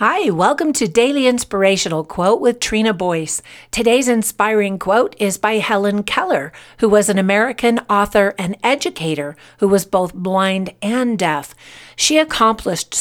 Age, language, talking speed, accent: 50-69, English, 145 wpm, American